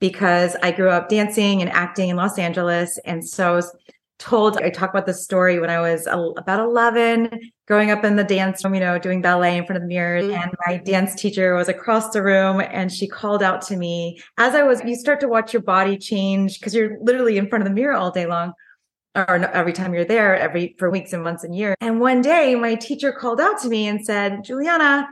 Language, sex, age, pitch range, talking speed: English, female, 30-49, 180-230 Hz, 235 wpm